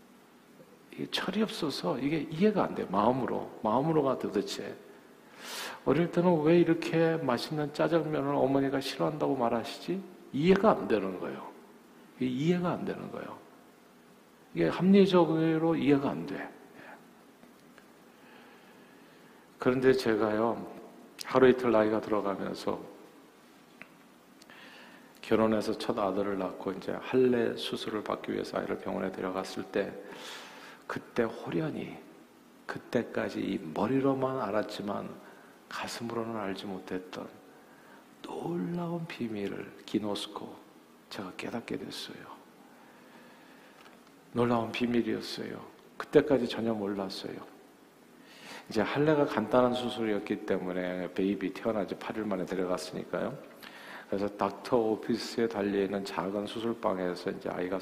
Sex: male